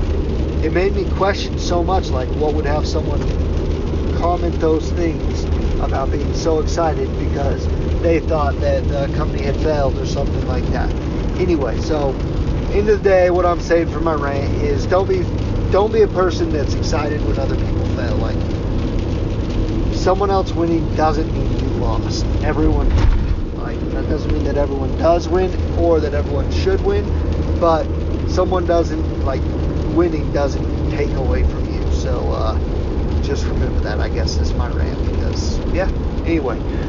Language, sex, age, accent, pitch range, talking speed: English, male, 30-49, American, 80-105 Hz, 165 wpm